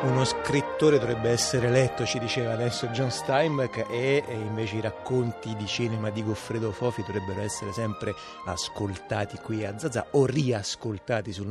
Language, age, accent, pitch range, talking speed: Italian, 30-49, native, 110-135 Hz, 155 wpm